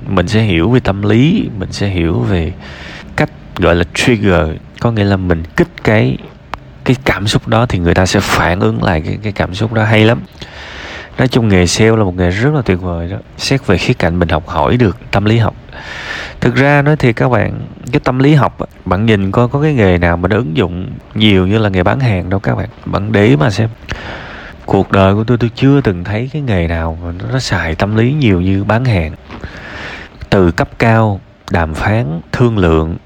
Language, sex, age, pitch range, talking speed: Vietnamese, male, 20-39, 90-125 Hz, 220 wpm